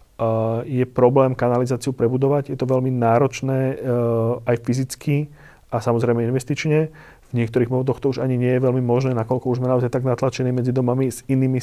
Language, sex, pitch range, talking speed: Slovak, male, 120-130 Hz, 175 wpm